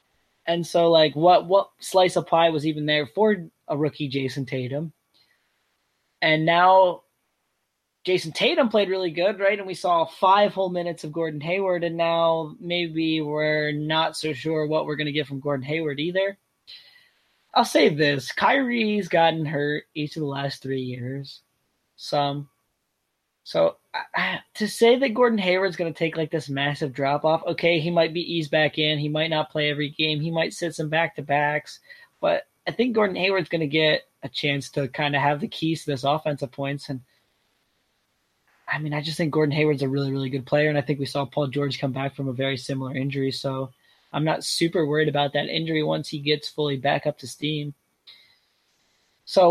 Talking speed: 195 wpm